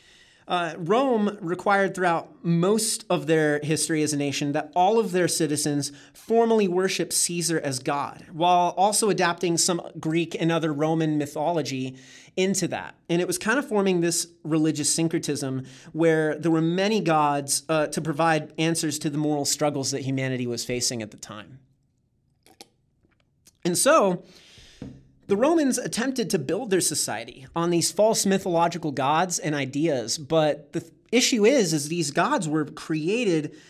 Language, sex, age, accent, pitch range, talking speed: English, male, 30-49, American, 150-185 Hz, 155 wpm